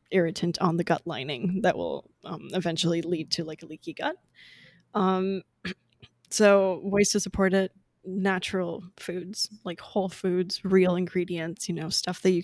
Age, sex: 20-39, female